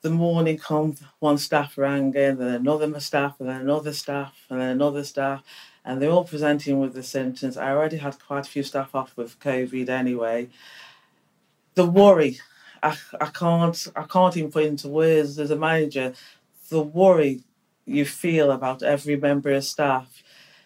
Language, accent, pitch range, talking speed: English, British, 135-165 Hz, 175 wpm